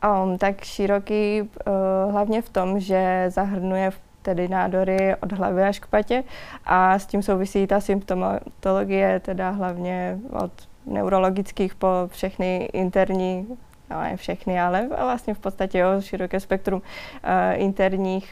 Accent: native